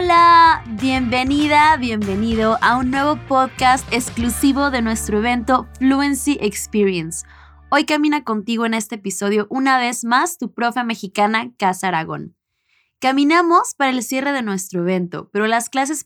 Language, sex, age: English, female, 20-39